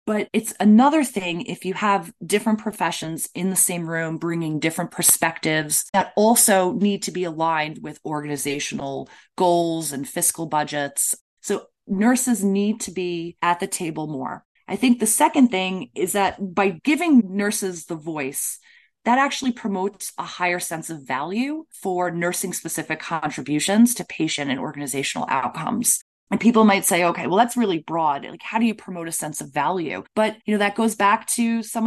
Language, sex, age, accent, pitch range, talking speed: English, female, 20-39, American, 170-220 Hz, 170 wpm